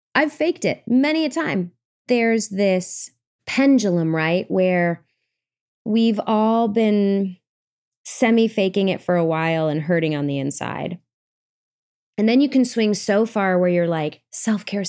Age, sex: 20-39, female